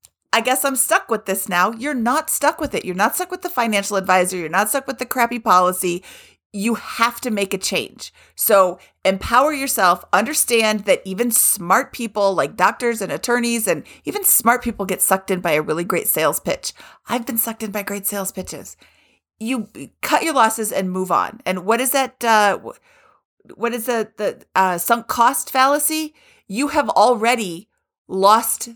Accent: American